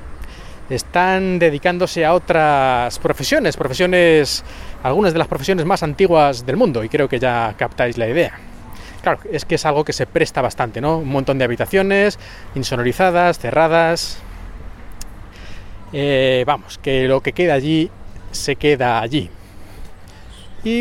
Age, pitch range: 20-39, 120-170 Hz